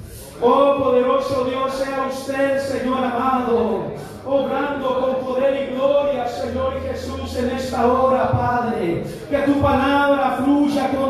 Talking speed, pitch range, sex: 125 wpm, 260-290 Hz, male